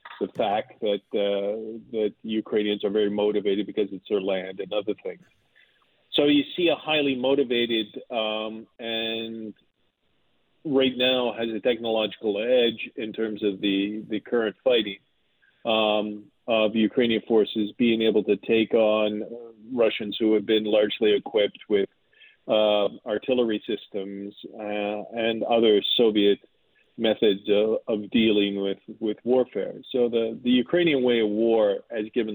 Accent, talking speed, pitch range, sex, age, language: American, 140 wpm, 105-120 Hz, male, 40-59, English